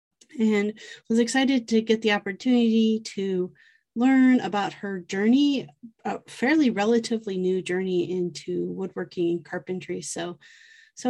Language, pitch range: English, 205-245 Hz